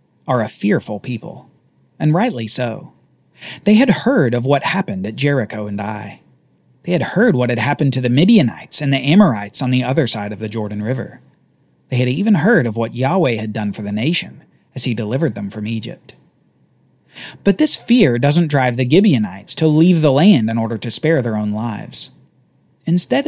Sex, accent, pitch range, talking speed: male, American, 115-170 Hz, 190 wpm